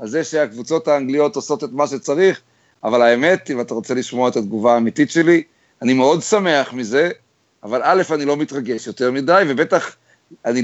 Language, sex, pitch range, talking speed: Hebrew, male, 135-180 Hz, 175 wpm